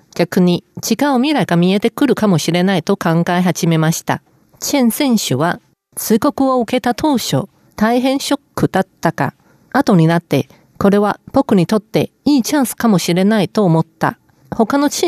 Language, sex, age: Japanese, female, 40-59